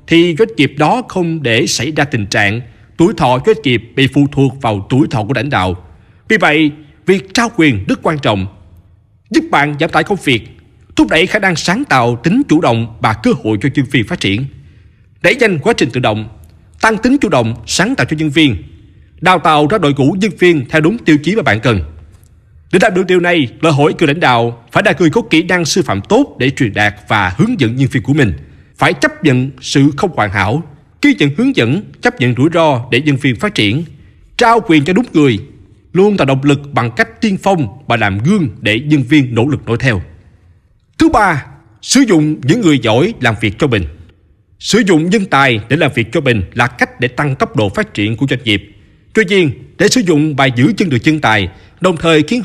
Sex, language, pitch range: male, Vietnamese, 110-165 Hz